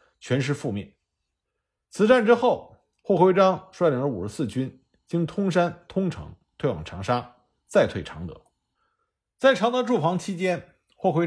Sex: male